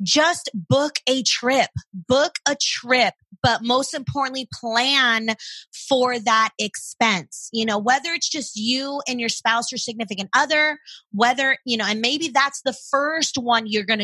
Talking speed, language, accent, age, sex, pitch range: 160 wpm, English, American, 30-49, female, 230-295 Hz